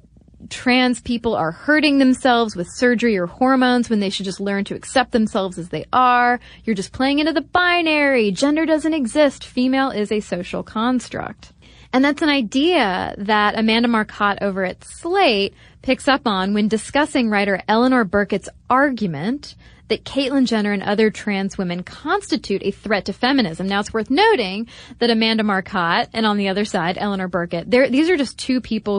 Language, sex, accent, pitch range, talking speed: English, female, American, 195-255 Hz, 175 wpm